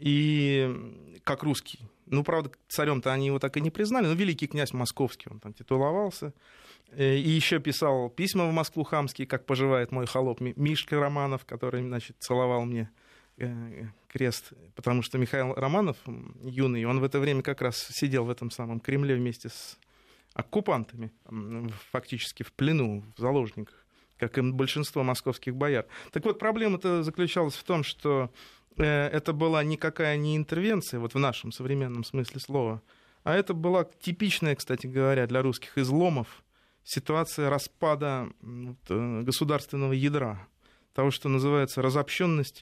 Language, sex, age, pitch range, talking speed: Russian, male, 30-49, 125-155 Hz, 140 wpm